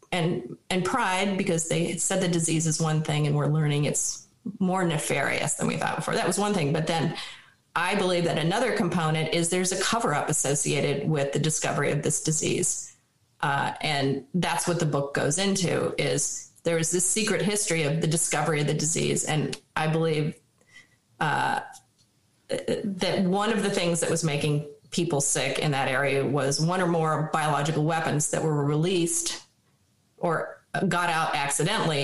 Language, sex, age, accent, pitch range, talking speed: English, female, 30-49, American, 155-185 Hz, 175 wpm